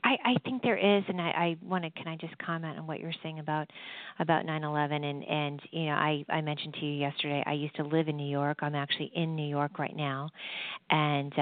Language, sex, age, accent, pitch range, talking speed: English, female, 40-59, American, 150-165 Hz, 240 wpm